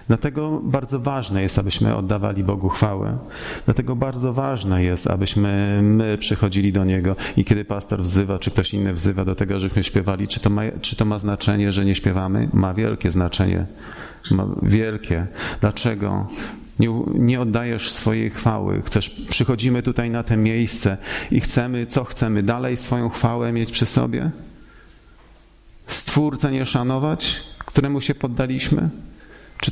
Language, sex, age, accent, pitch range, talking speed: Polish, male, 40-59, native, 95-115 Hz, 145 wpm